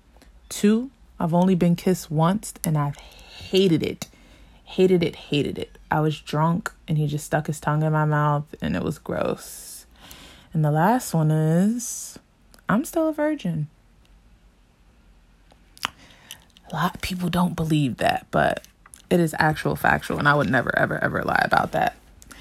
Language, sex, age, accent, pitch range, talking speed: English, female, 20-39, American, 150-195 Hz, 160 wpm